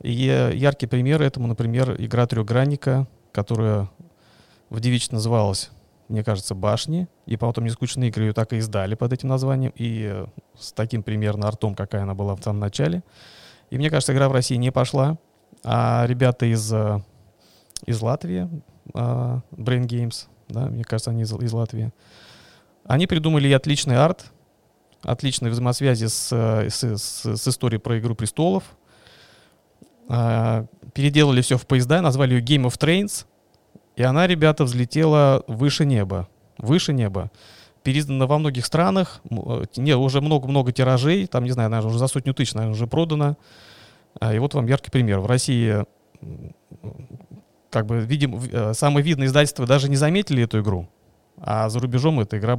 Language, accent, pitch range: Russian, native, 110-140 Hz